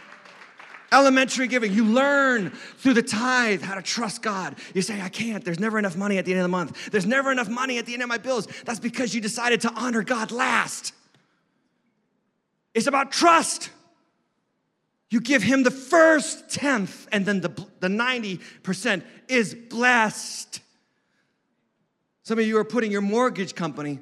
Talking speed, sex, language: 165 wpm, male, English